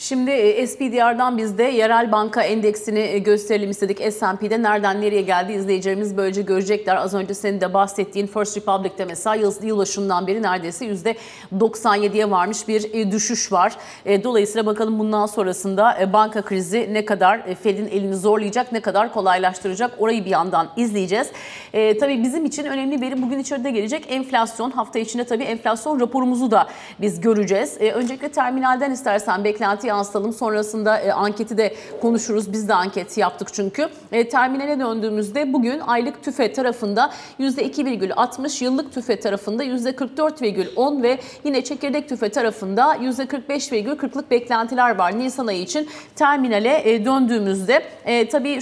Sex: female